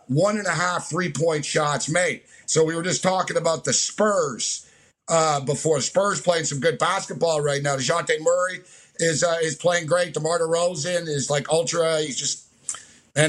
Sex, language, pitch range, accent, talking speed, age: male, English, 160-225 Hz, American, 180 wpm, 50-69